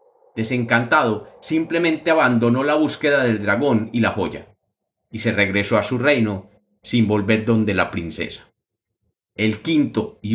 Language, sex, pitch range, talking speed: Spanish, male, 110-145 Hz, 140 wpm